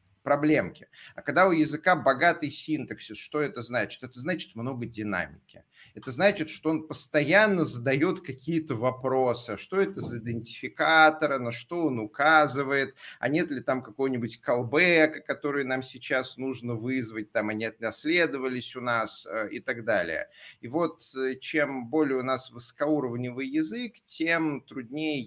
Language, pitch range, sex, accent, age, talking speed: Russian, 120-155 Hz, male, native, 30-49, 140 wpm